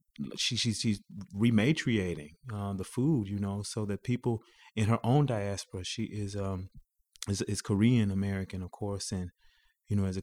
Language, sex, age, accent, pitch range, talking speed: English, male, 30-49, American, 95-105 Hz, 175 wpm